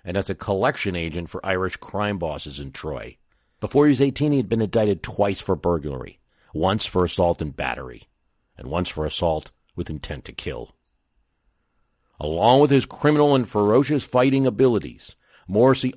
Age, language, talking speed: 50-69, English, 165 wpm